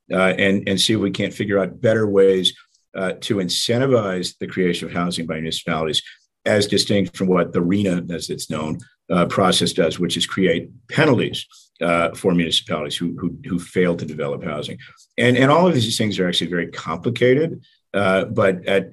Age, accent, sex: 50-69, American, male